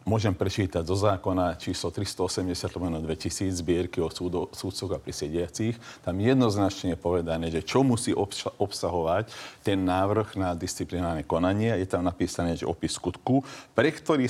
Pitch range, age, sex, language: 90-110 Hz, 50-69, male, Slovak